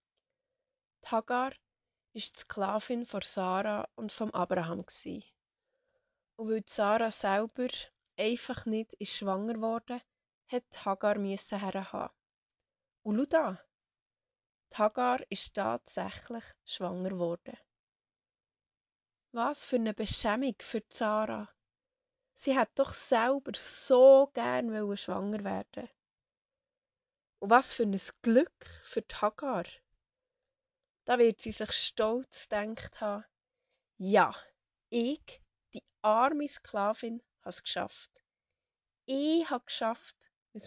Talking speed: 110 wpm